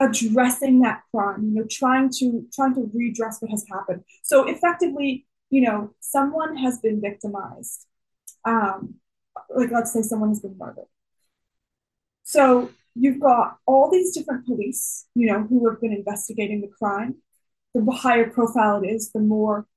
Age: 20-39